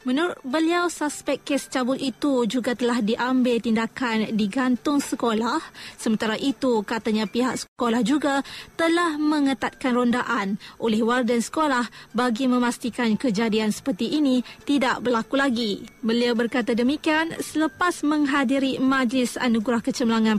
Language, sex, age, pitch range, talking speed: Malay, female, 20-39, 240-290 Hz, 120 wpm